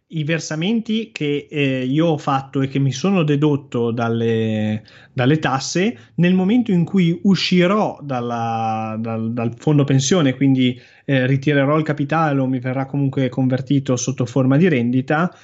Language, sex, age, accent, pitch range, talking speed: Italian, male, 20-39, native, 130-170 Hz, 145 wpm